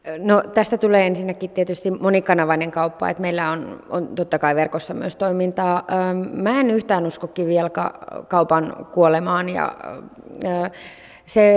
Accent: native